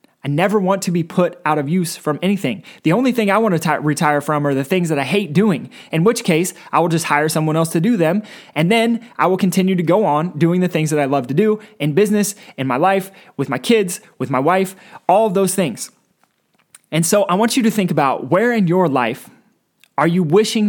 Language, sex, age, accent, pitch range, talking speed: English, male, 20-39, American, 155-200 Hz, 245 wpm